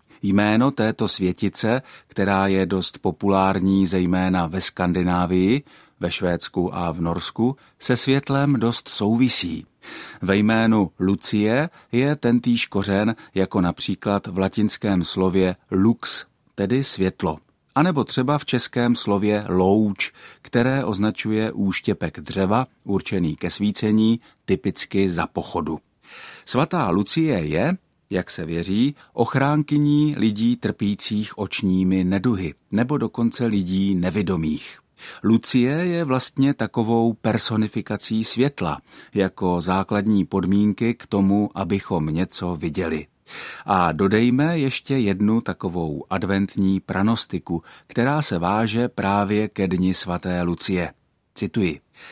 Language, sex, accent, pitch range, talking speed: Czech, male, native, 95-120 Hz, 110 wpm